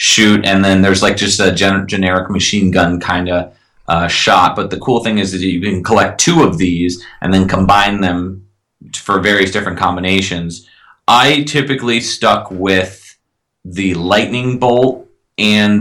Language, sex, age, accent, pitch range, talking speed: English, male, 30-49, American, 95-110 Hz, 165 wpm